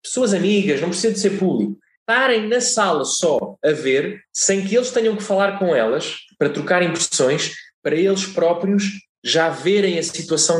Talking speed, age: 175 wpm, 20-39